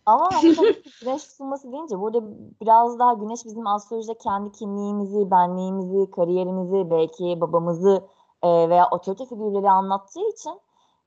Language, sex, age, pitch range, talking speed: Turkish, female, 20-39, 185-245 Hz, 115 wpm